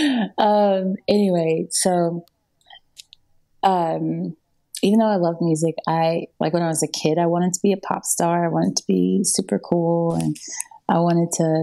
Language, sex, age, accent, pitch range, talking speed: English, female, 30-49, American, 150-180 Hz, 170 wpm